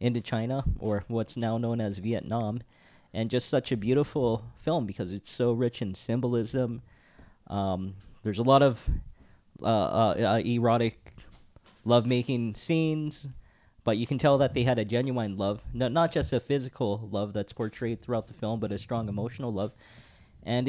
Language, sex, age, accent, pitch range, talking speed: English, male, 20-39, American, 105-125 Hz, 160 wpm